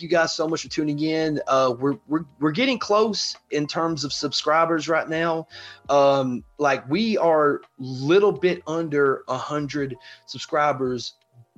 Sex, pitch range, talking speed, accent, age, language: male, 130-150 Hz, 155 wpm, American, 30-49, English